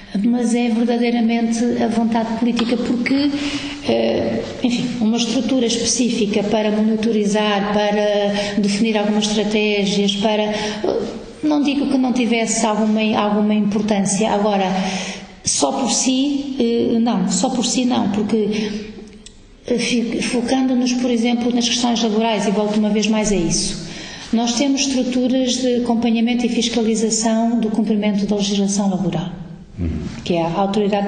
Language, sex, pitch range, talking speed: Portuguese, female, 205-240 Hz, 125 wpm